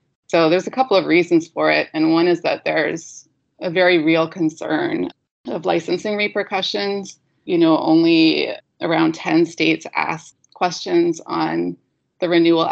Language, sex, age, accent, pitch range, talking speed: English, female, 20-39, American, 160-205 Hz, 145 wpm